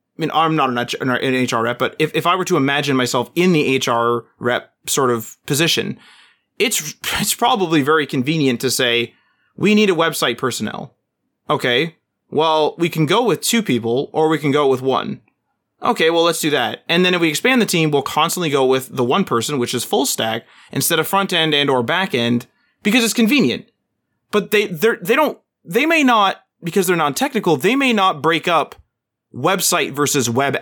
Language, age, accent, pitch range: English, 30-49, American, 130-185 Hz